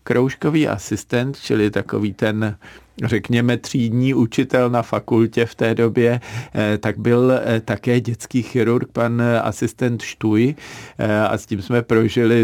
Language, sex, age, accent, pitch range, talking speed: Czech, male, 50-69, native, 110-130 Hz, 125 wpm